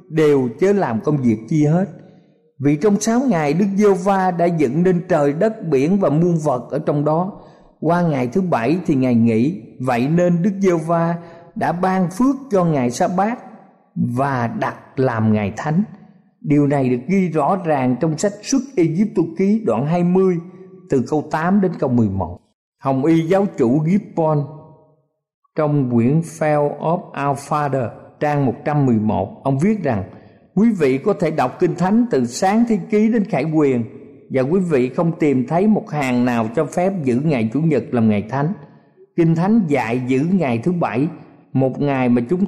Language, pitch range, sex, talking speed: Vietnamese, 130-185 Hz, male, 180 wpm